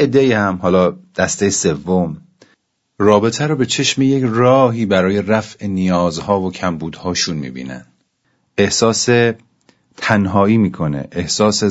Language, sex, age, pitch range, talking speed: Persian, male, 40-59, 85-105 Hz, 110 wpm